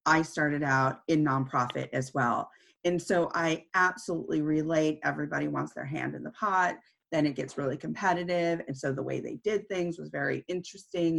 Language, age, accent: English, 30-49, American